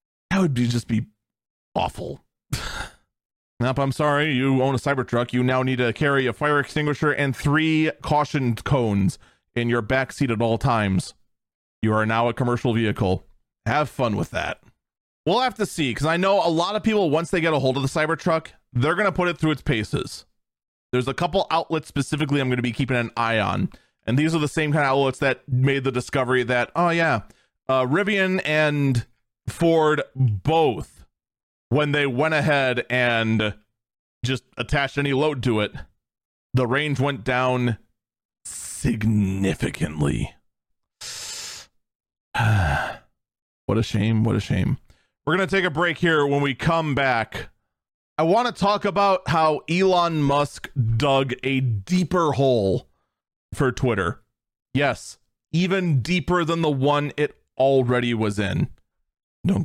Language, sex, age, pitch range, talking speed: English, male, 30-49, 120-155 Hz, 160 wpm